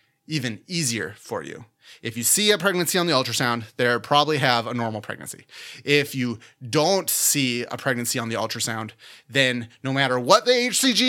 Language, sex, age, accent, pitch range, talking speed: English, male, 30-49, American, 120-150 Hz, 180 wpm